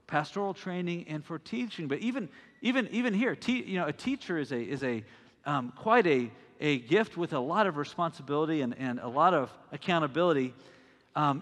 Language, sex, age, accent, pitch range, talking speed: English, male, 50-69, American, 130-190 Hz, 190 wpm